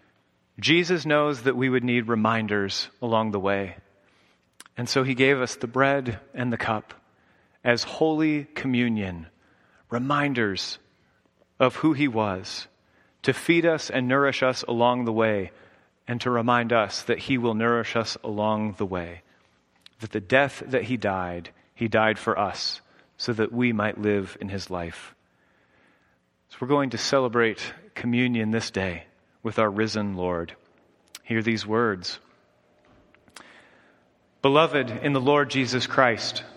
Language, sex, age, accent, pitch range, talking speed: English, male, 30-49, American, 105-140 Hz, 145 wpm